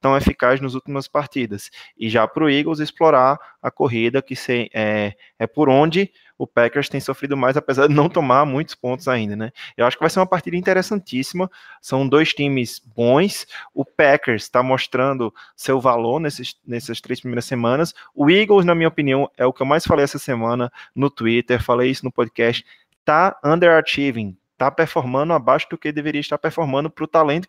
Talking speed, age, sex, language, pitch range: 190 wpm, 20-39, male, Portuguese, 125-160 Hz